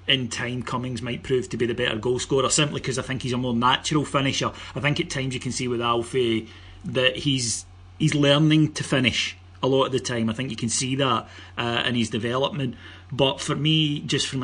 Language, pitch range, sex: English, 115-135 Hz, male